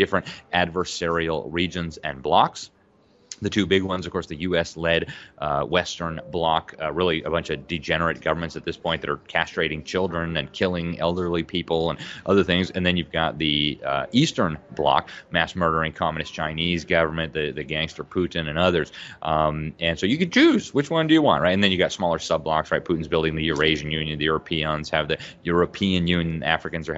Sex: male